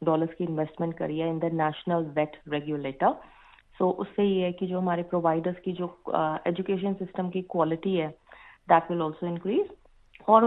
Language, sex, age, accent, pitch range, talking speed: Hindi, female, 30-49, native, 170-220 Hz, 170 wpm